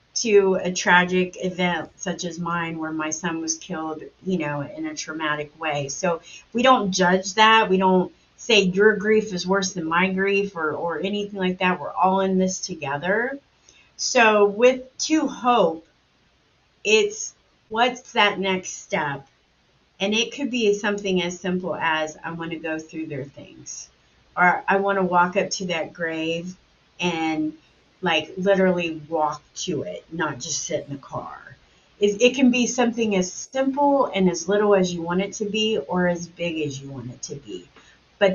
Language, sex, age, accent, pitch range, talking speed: English, female, 30-49, American, 170-230 Hz, 175 wpm